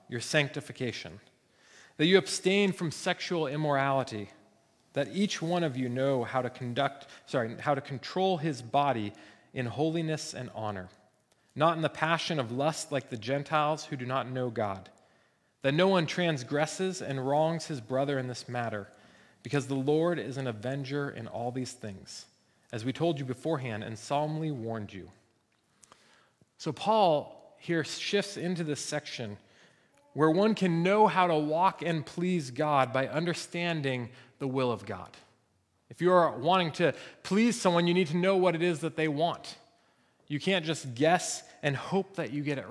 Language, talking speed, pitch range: English, 170 wpm, 130-170 Hz